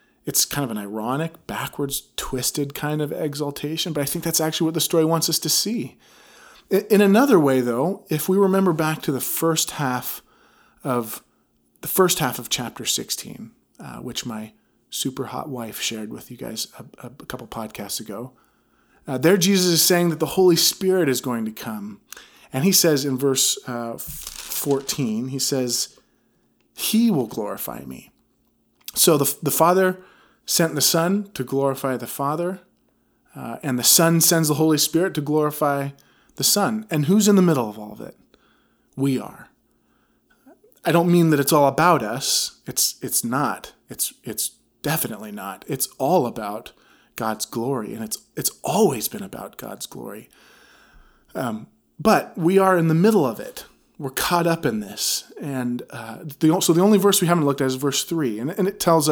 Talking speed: 180 wpm